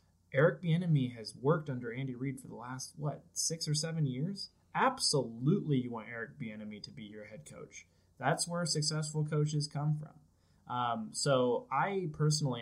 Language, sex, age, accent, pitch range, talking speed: English, male, 20-39, American, 105-135 Hz, 165 wpm